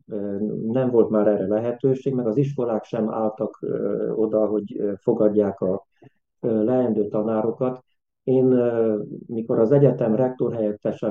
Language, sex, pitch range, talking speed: Hungarian, male, 105-125 Hz, 115 wpm